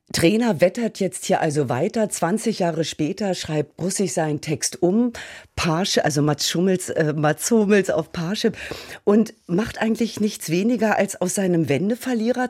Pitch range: 155-200 Hz